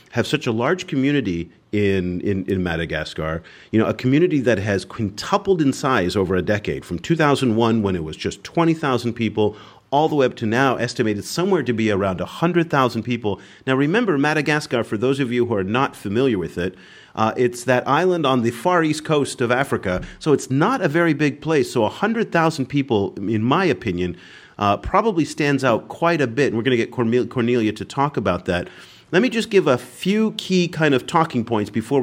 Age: 40-59